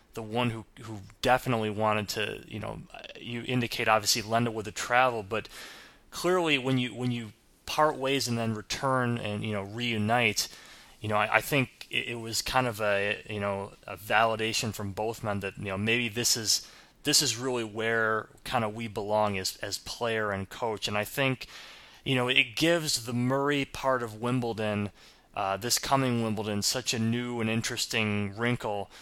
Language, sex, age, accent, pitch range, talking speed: English, male, 20-39, American, 105-125 Hz, 190 wpm